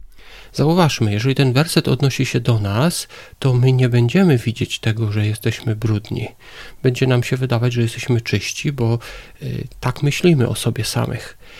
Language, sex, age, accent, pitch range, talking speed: Polish, male, 40-59, native, 115-140 Hz, 155 wpm